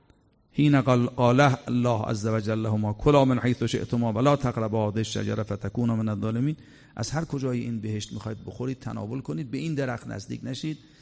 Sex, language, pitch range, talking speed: male, Persian, 110-135 Hz, 165 wpm